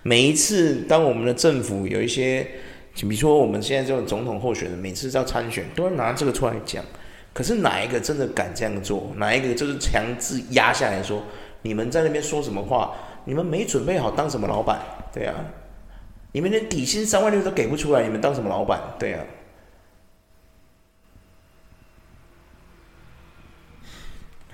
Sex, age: male, 30-49